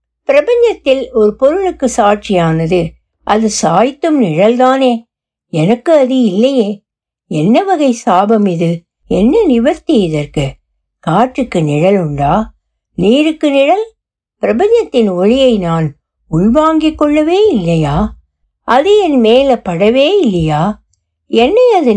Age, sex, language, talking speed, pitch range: 60-79, female, Tamil, 95 wpm, 190-280 Hz